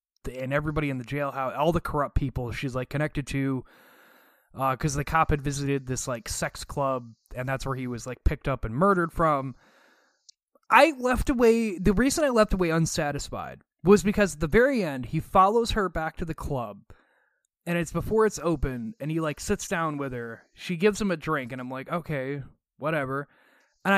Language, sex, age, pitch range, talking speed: English, male, 20-39, 130-175 Hz, 200 wpm